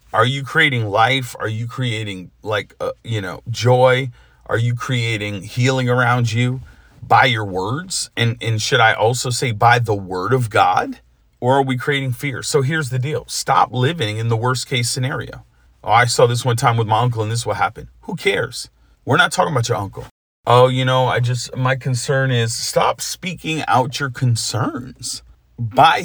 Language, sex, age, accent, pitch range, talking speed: English, male, 40-59, American, 115-130 Hz, 190 wpm